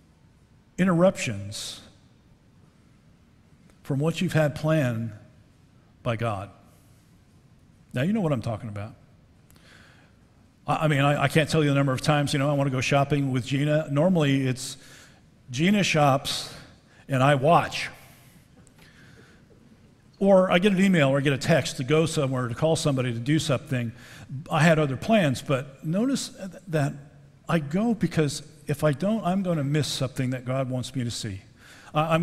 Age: 50-69